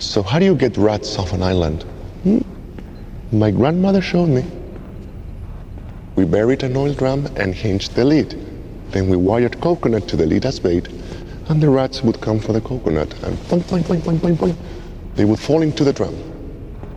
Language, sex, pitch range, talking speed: English, male, 90-125 Hz, 185 wpm